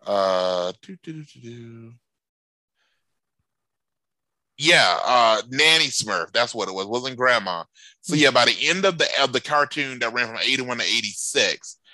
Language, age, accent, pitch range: English, 30-49, American, 105-130 Hz